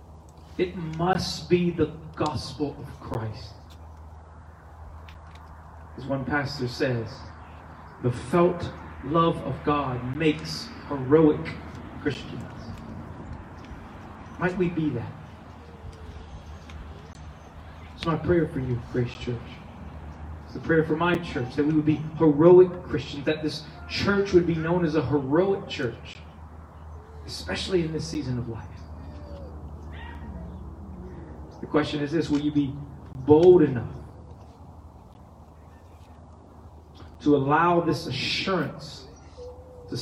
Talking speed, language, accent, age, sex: 110 wpm, English, American, 40-59, male